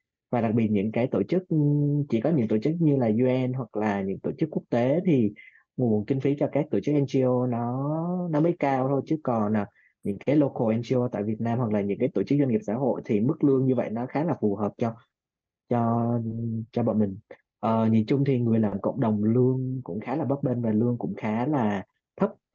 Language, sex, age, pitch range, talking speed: Vietnamese, male, 20-39, 110-140 Hz, 240 wpm